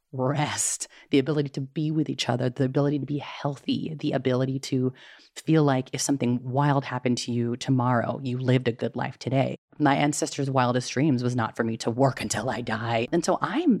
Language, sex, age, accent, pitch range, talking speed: English, female, 30-49, American, 125-150 Hz, 205 wpm